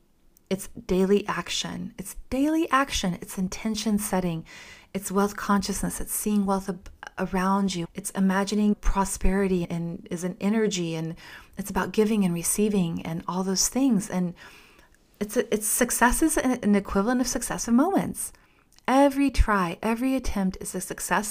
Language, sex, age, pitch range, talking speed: English, female, 20-39, 185-235 Hz, 145 wpm